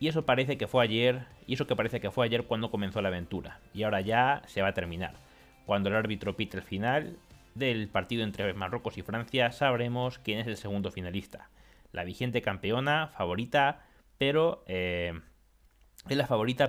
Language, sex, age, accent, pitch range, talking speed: Spanish, male, 30-49, Spanish, 95-120 Hz, 185 wpm